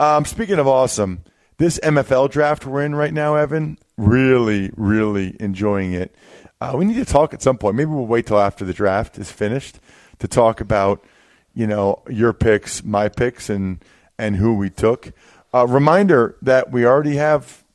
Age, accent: 40-59, American